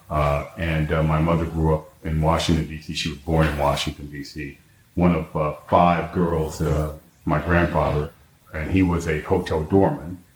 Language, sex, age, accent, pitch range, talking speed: English, male, 40-59, American, 80-90 Hz, 175 wpm